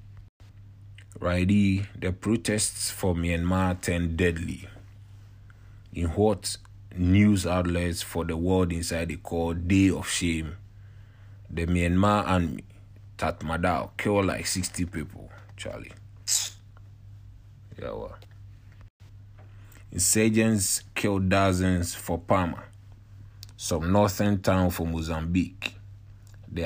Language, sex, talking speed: English, male, 95 wpm